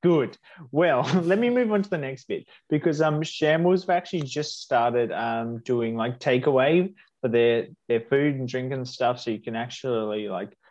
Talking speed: 190 wpm